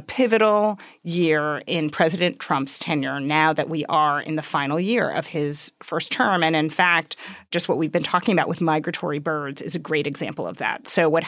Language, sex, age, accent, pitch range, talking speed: English, female, 30-49, American, 160-205 Hz, 200 wpm